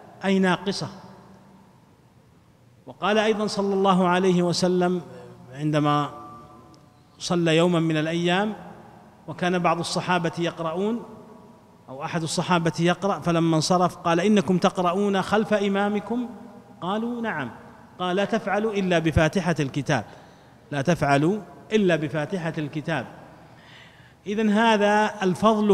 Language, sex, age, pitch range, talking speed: Arabic, male, 30-49, 160-200 Hz, 105 wpm